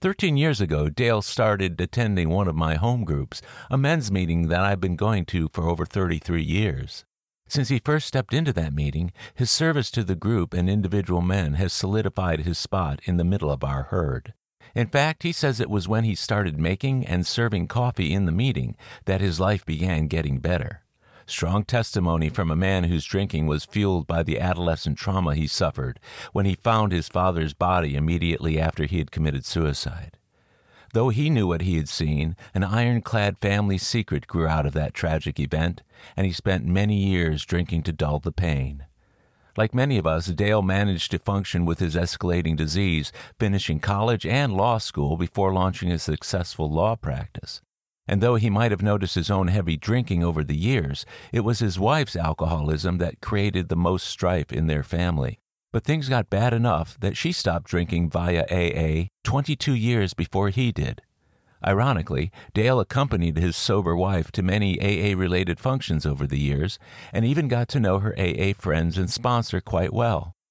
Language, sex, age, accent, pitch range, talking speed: English, male, 50-69, American, 85-110 Hz, 180 wpm